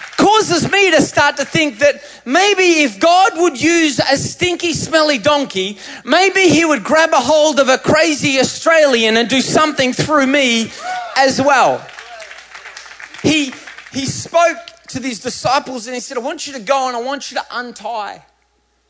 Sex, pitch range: male, 235-305 Hz